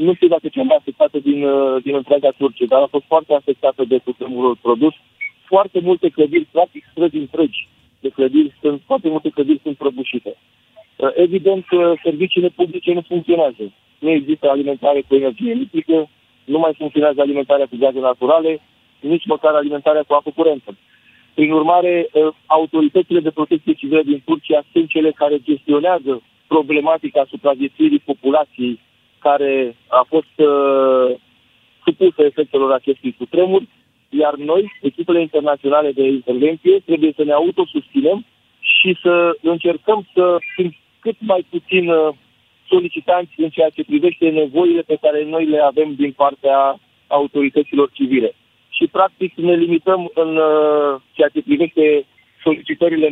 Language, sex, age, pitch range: Romanian, male, 50-69, 140-180 Hz